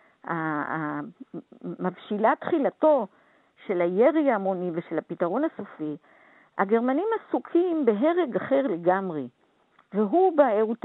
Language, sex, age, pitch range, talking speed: Hebrew, female, 50-69, 205-315 Hz, 85 wpm